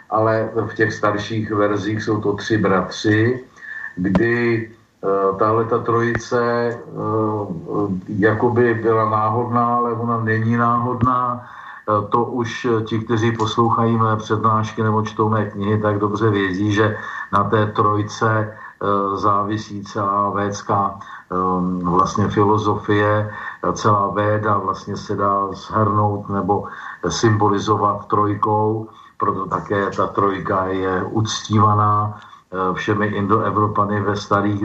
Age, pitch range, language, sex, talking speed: 50-69, 105-115 Hz, Slovak, male, 105 wpm